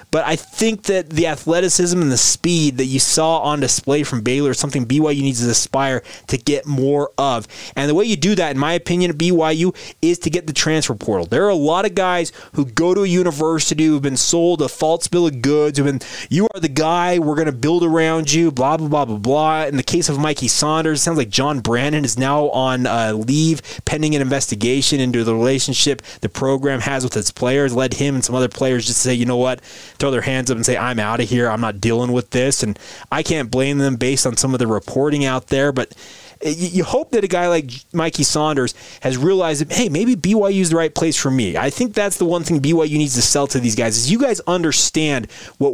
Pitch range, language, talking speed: 130-165 Hz, English, 245 wpm